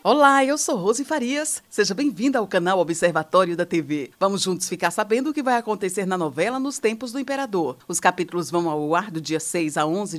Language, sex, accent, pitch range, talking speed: Portuguese, female, Brazilian, 160-230 Hz, 210 wpm